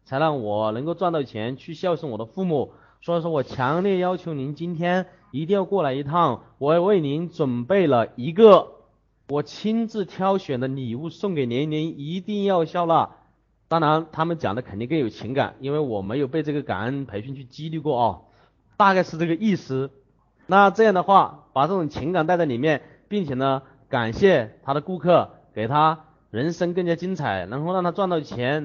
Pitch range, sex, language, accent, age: 135-185 Hz, male, Chinese, native, 30-49